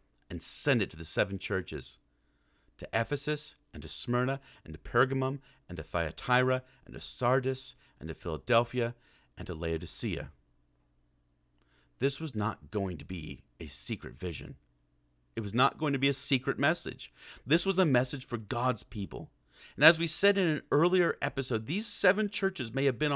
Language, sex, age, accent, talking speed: English, male, 40-59, American, 170 wpm